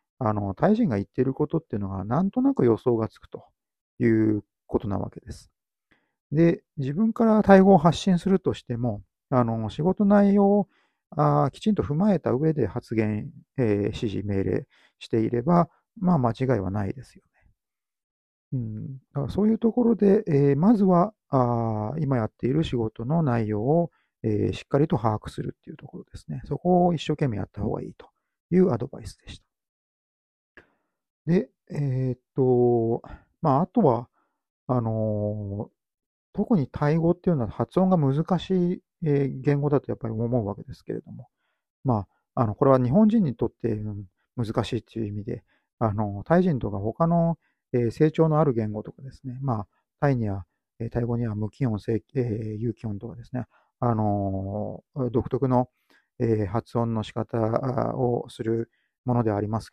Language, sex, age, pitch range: Japanese, male, 40-59, 110-160 Hz